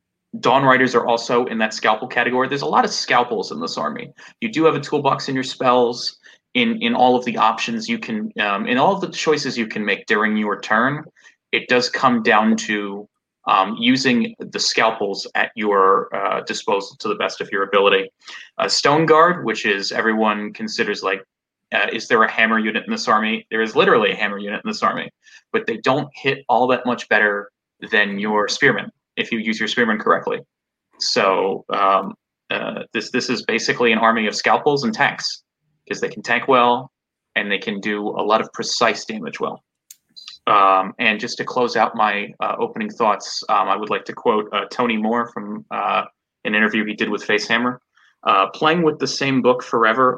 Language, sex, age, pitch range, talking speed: English, male, 30-49, 110-145 Hz, 200 wpm